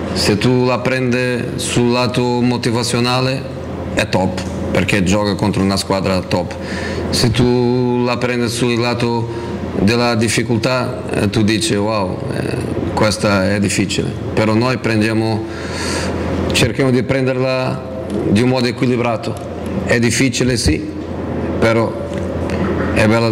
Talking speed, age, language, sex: 115 wpm, 40-59, Italian, male